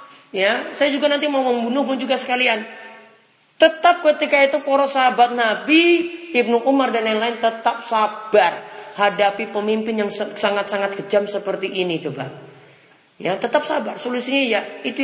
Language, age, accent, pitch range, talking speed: Indonesian, 30-49, native, 165-245 Hz, 140 wpm